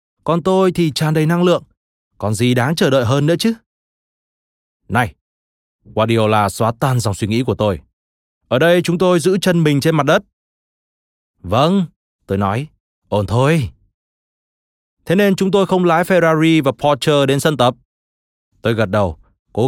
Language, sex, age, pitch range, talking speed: Vietnamese, male, 20-39, 110-160 Hz, 170 wpm